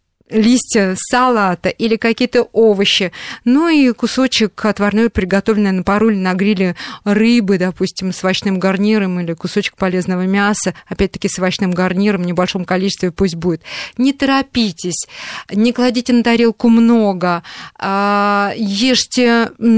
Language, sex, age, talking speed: Russian, female, 20-39, 125 wpm